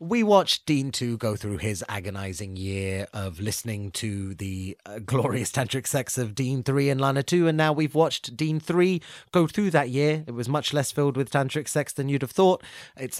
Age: 30-49